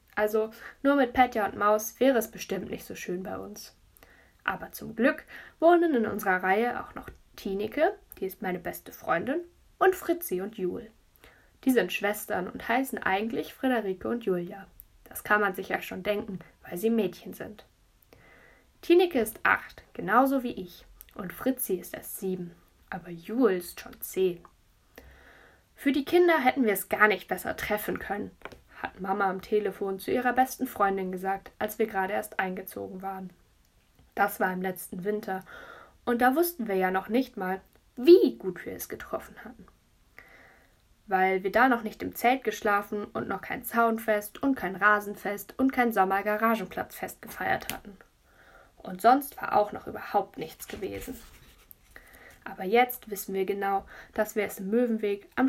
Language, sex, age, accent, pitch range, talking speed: German, female, 10-29, German, 190-245 Hz, 165 wpm